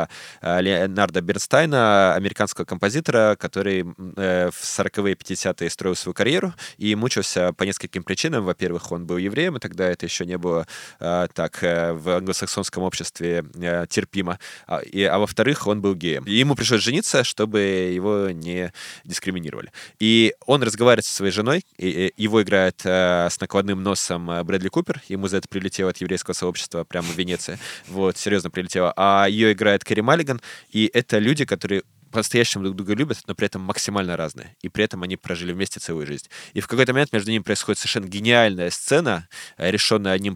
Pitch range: 90-110 Hz